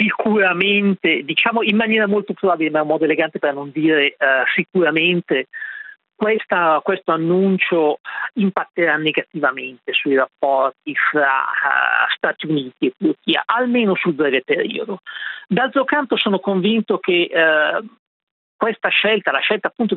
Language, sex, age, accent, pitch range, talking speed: Italian, male, 50-69, native, 155-205 Hz, 115 wpm